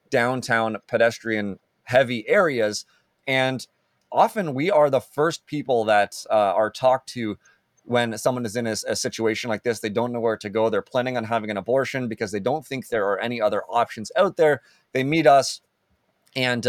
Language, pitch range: English, 110-135 Hz